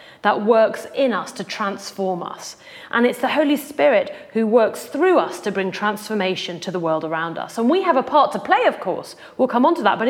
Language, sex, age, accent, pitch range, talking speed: English, female, 30-49, British, 195-295 Hz, 230 wpm